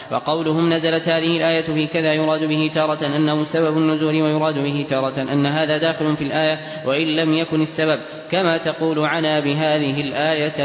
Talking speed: 165 wpm